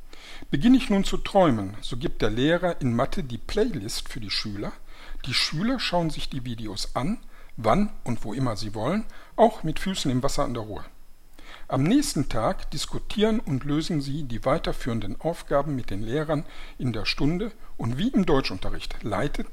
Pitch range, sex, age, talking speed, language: 120-175 Hz, male, 60-79, 180 wpm, German